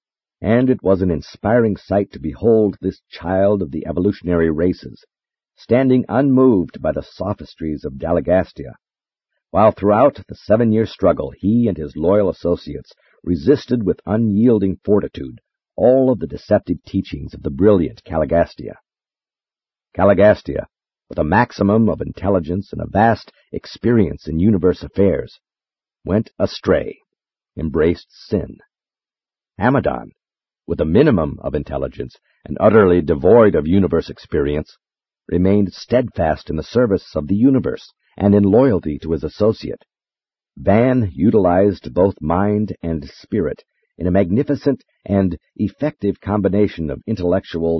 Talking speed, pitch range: 125 wpm, 85-110 Hz